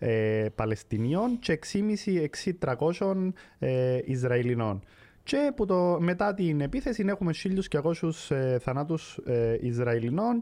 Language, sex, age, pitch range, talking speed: Greek, male, 20-39, 120-175 Hz, 100 wpm